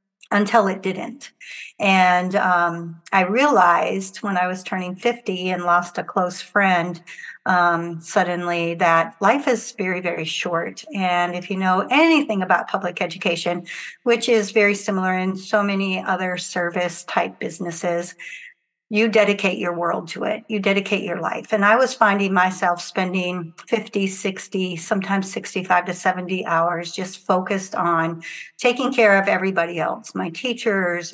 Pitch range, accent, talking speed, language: 175-210 Hz, American, 150 wpm, English